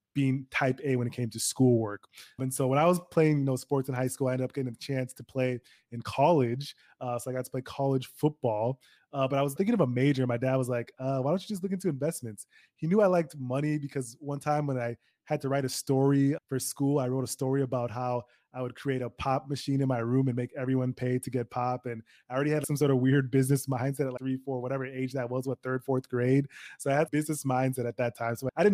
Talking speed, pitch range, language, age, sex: 270 wpm, 125-140 Hz, English, 20-39, male